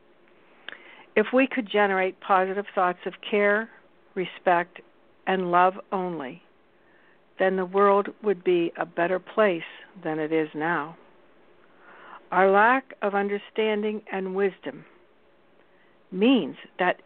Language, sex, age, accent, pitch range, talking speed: English, female, 60-79, American, 180-225 Hz, 115 wpm